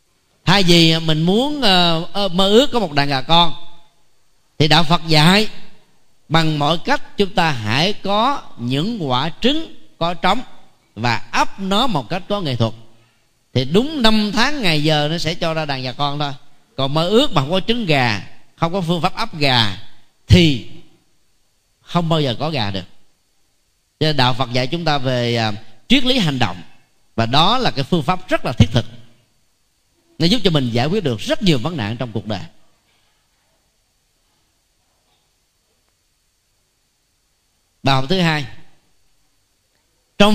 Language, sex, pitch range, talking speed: Vietnamese, male, 120-190 Hz, 165 wpm